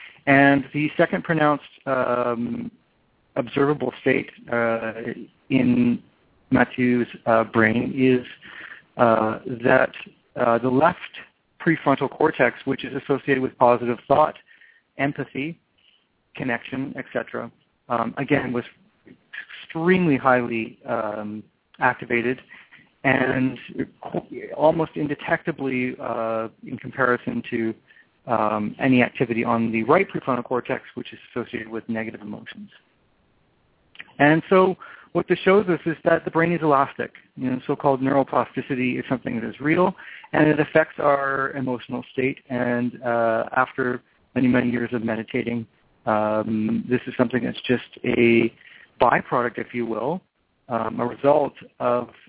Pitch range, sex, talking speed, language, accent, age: 120-140 Hz, male, 125 wpm, English, American, 40-59